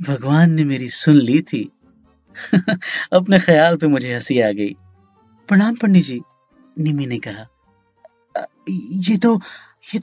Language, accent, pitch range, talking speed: Hindi, native, 165-245 Hz, 140 wpm